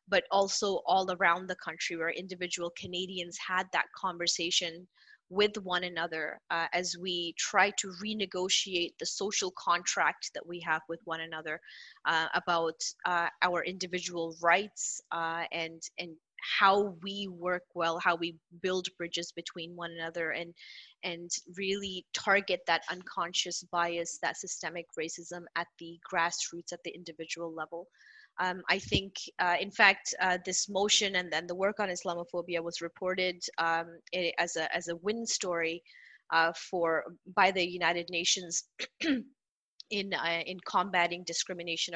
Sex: female